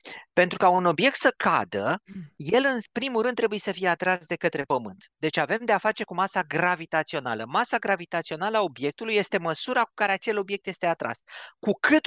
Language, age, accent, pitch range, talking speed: Romanian, 30-49, native, 170-230 Hz, 195 wpm